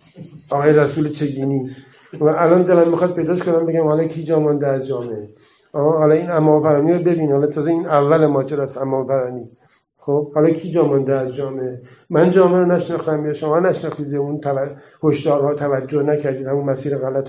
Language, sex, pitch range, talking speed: Persian, male, 140-185 Hz, 165 wpm